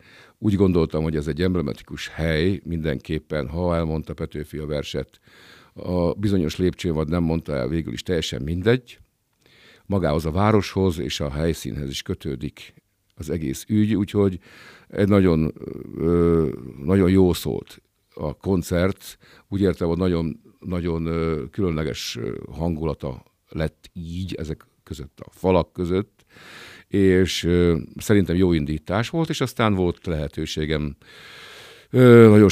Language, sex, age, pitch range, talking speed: Hungarian, male, 50-69, 75-95 Hz, 125 wpm